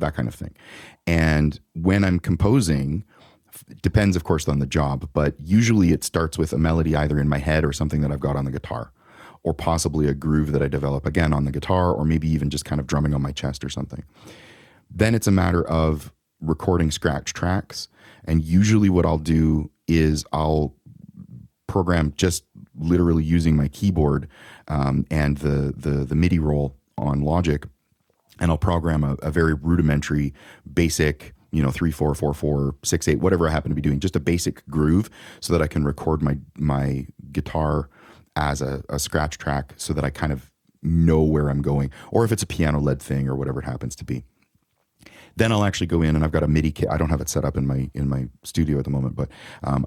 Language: English